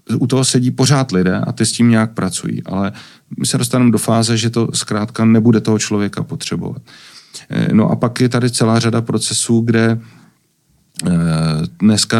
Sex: male